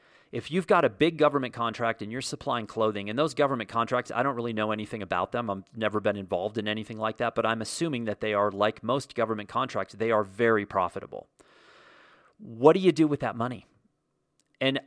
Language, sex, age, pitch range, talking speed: English, male, 40-59, 110-140 Hz, 210 wpm